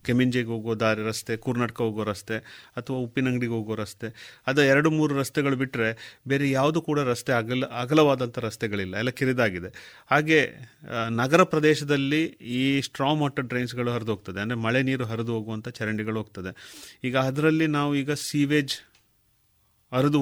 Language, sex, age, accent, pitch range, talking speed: Kannada, male, 30-49, native, 115-145 Hz, 140 wpm